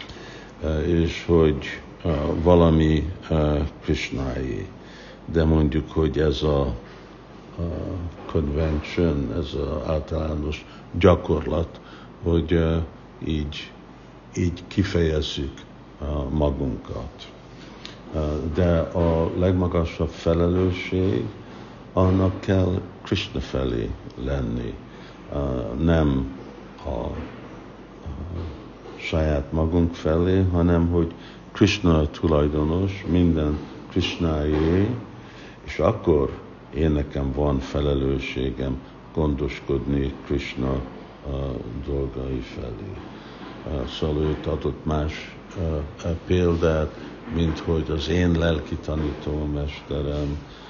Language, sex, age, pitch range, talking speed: Hungarian, male, 60-79, 75-85 Hz, 85 wpm